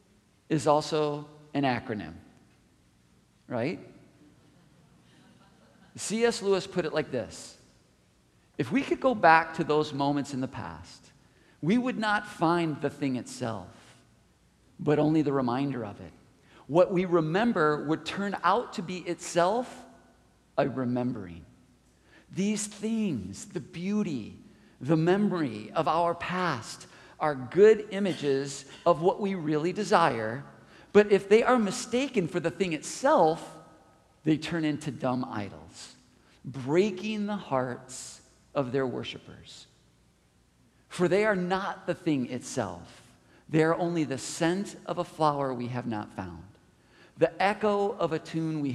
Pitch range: 125-185 Hz